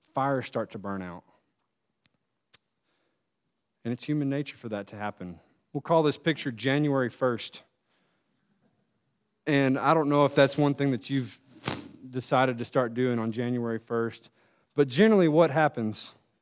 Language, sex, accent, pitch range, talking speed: English, male, American, 115-145 Hz, 145 wpm